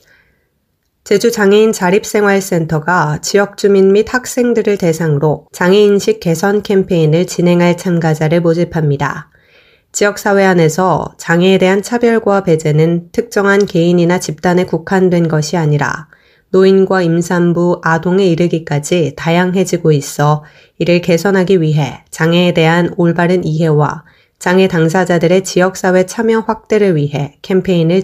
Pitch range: 165-200 Hz